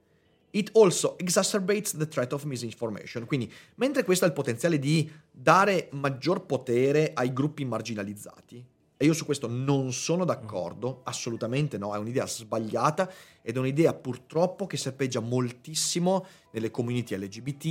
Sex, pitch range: male, 120-165 Hz